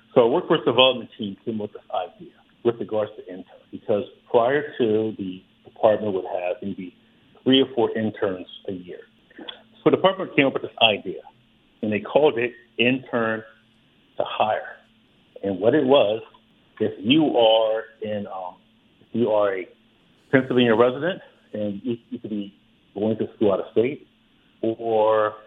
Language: English